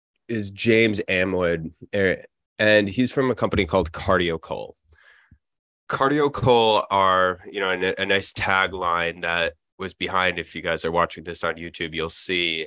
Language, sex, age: English, male, 20-39